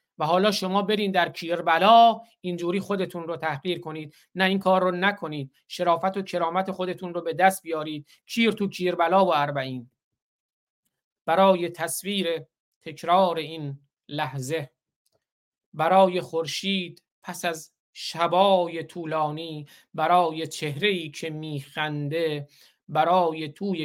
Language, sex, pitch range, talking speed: Persian, male, 145-185 Hz, 115 wpm